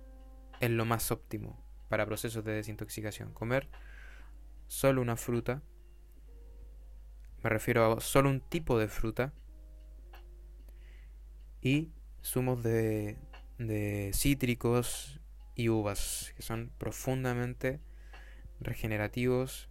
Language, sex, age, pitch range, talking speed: Spanish, male, 20-39, 95-120 Hz, 95 wpm